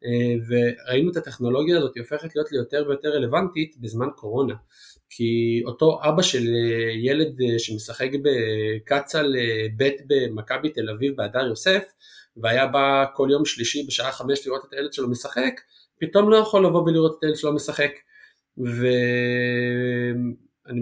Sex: male